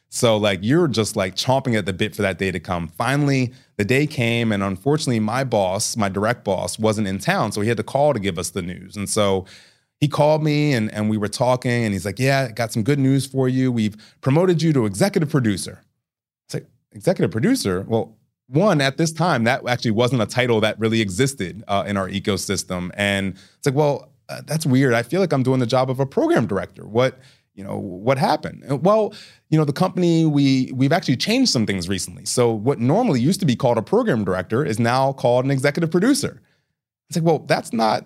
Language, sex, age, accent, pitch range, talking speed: English, male, 30-49, American, 105-145 Hz, 220 wpm